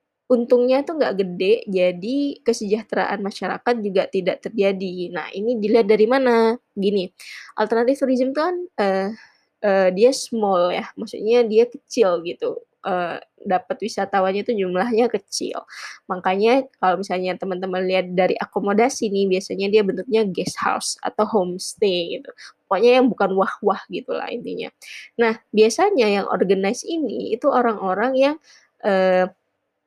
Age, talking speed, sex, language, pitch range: 20-39, 135 wpm, female, Indonesian, 190-235 Hz